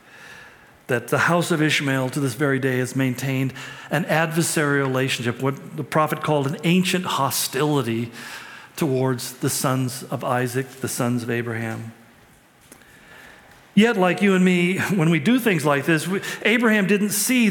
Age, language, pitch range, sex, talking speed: 50-69, English, 150-220 Hz, male, 155 wpm